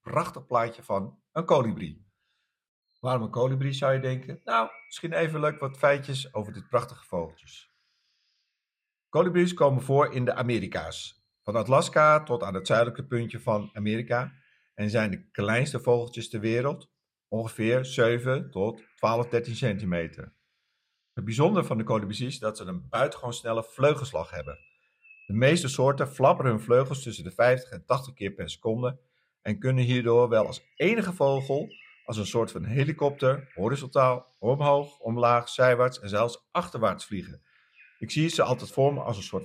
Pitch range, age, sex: 110-135 Hz, 50-69, male